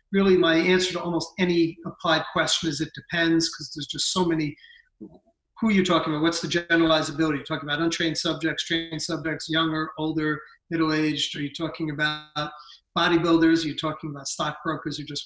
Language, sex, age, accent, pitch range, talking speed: English, male, 40-59, American, 160-185 Hz, 180 wpm